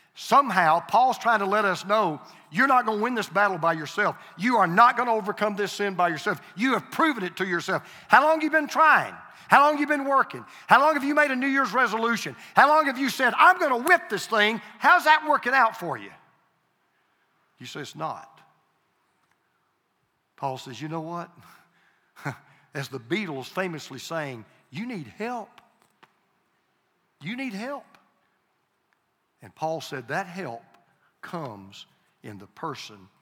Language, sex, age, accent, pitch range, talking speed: English, male, 50-69, American, 155-225 Hz, 180 wpm